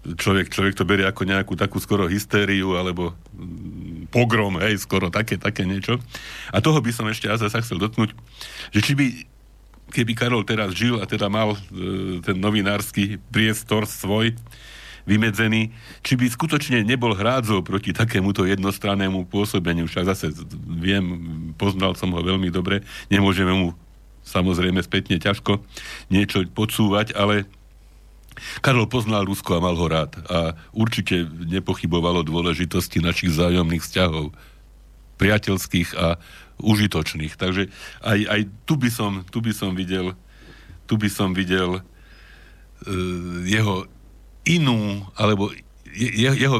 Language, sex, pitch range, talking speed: Slovak, male, 90-110 Hz, 130 wpm